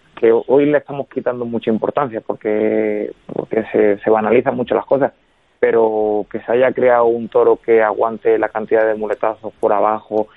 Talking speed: 175 wpm